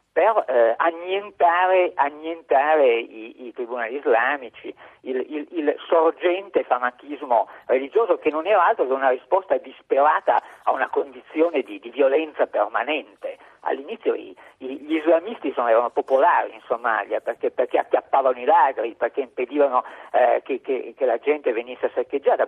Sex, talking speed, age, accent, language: male, 145 wpm, 50-69, native, Italian